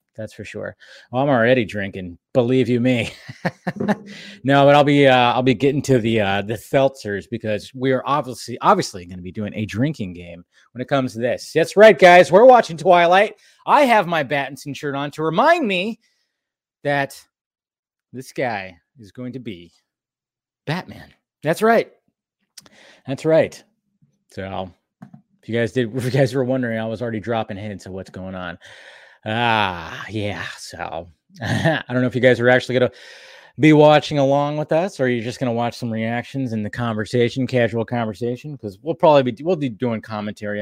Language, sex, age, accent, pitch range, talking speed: English, male, 30-49, American, 105-140 Hz, 190 wpm